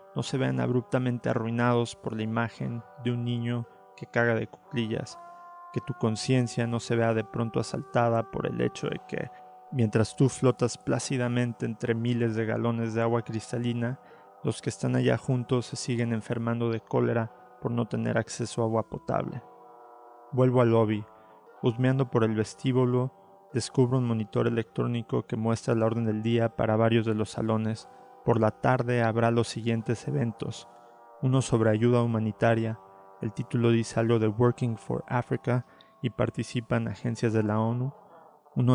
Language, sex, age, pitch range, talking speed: Spanish, male, 30-49, 115-125 Hz, 165 wpm